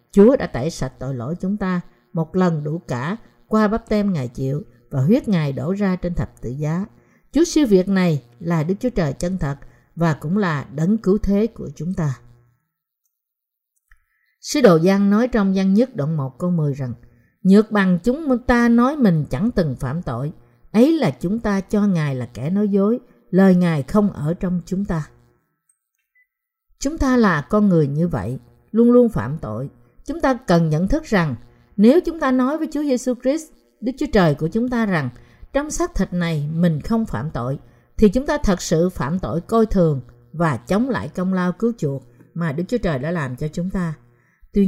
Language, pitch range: Vietnamese, 155-225 Hz